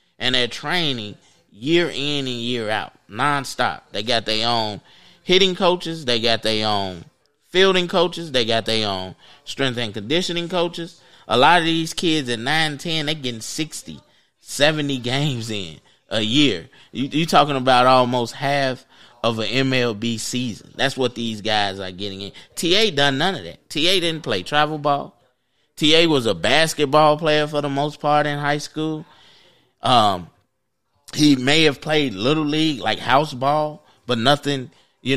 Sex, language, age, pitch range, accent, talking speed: male, English, 20-39, 125-150 Hz, American, 165 wpm